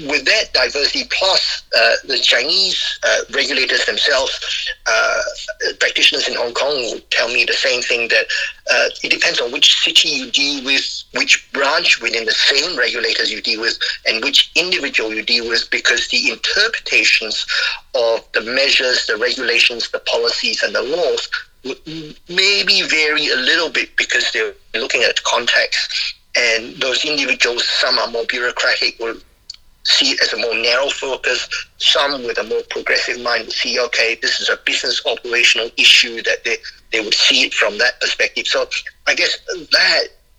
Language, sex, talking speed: English, male, 165 wpm